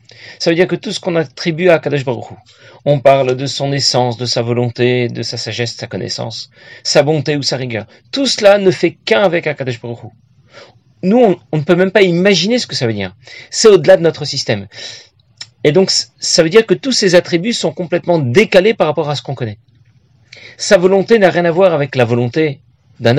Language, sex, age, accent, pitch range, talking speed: French, male, 40-59, French, 125-185 Hz, 215 wpm